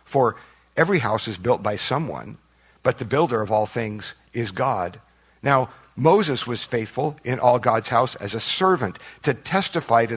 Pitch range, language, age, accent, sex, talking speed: 105-140 Hz, English, 50-69, American, male, 170 wpm